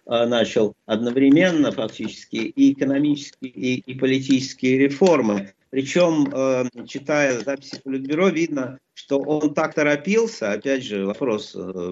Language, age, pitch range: Russian, 50-69, 125-170 Hz